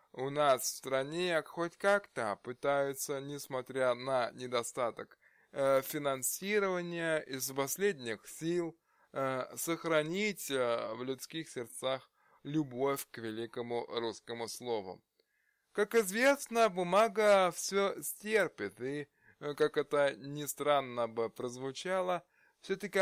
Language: Russian